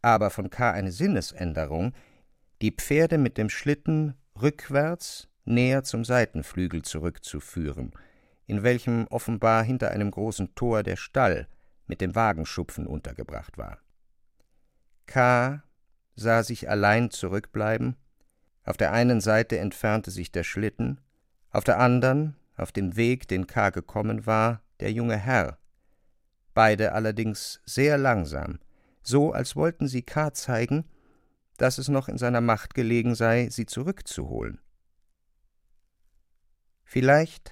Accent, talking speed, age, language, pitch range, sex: German, 120 wpm, 50-69, German, 90-125 Hz, male